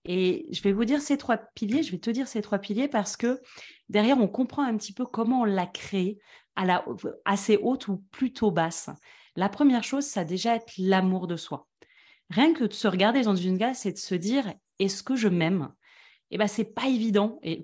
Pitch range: 170-225 Hz